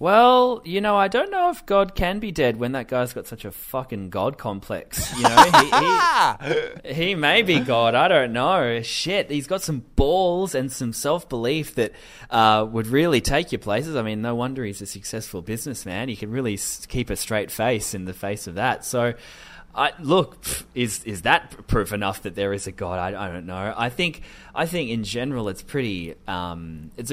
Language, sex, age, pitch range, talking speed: English, male, 20-39, 95-135 Hz, 210 wpm